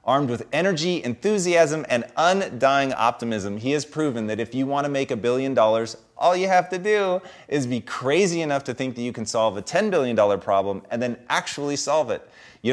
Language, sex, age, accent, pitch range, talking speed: English, male, 30-49, American, 115-150 Hz, 205 wpm